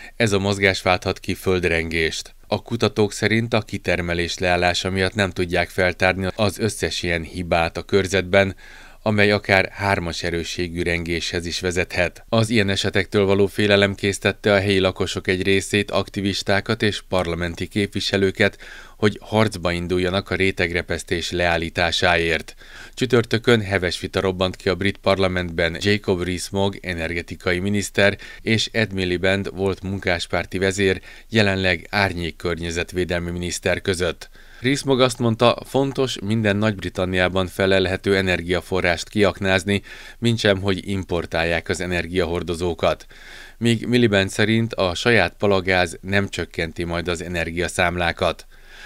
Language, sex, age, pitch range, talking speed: Hungarian, male, 30-49, 90-100 Hz, 120 wpm